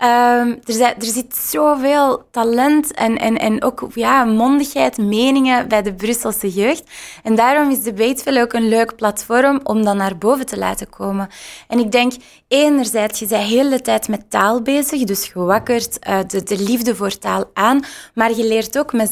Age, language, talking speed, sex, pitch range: 20-39, Dutch, 180 wpm, female, 200-250 Hz